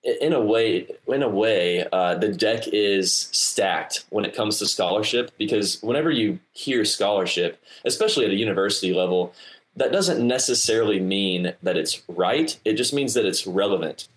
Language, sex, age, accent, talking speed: English, male, 20-39, American, 165 wpm